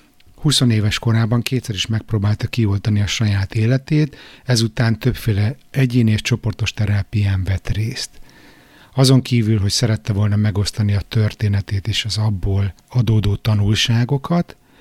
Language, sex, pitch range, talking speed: Hungarian, male, 105-120 Hz, 125 wpm